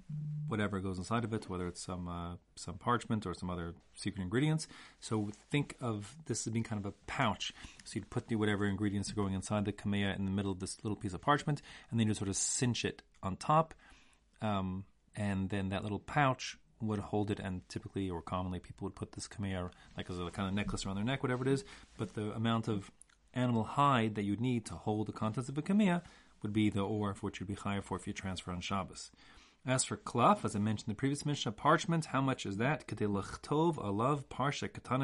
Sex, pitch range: male, 95-125 Hz